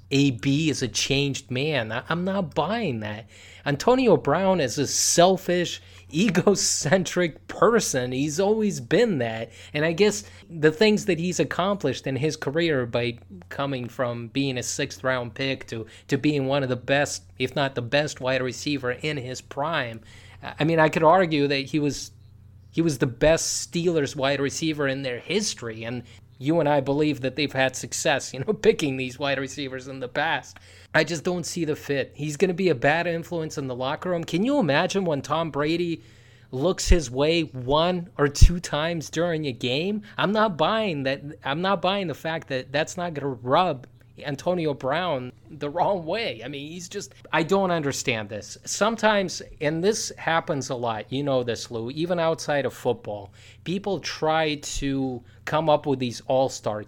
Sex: male